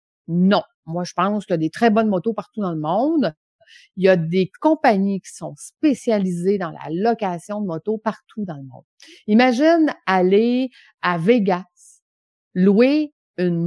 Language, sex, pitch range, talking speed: French, female, 180-235 Hz, 165 wpm